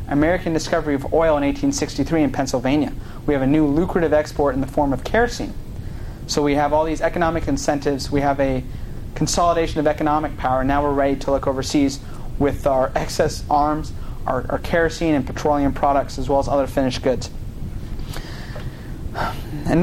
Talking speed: 175 wpm